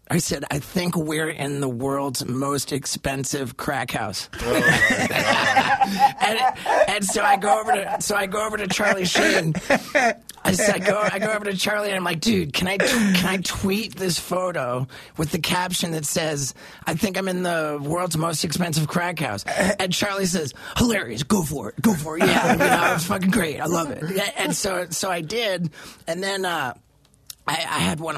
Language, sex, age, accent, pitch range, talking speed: English, male, 30-49, American, 140-185 Hz, 195 wpm